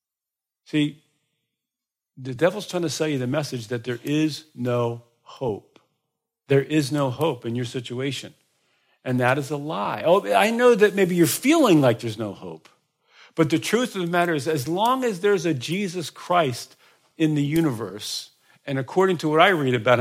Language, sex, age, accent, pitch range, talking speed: English, male, 50-69, American, 130-175 Hz, 185 wpm